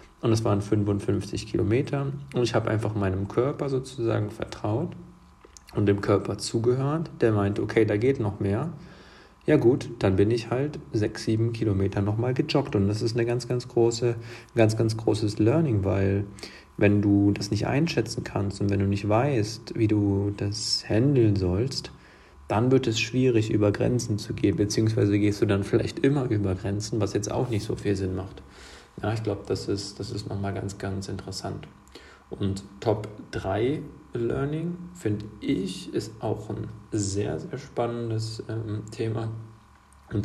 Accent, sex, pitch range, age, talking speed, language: German, male, 100-120 Hz, 40-59, 165 wpm, German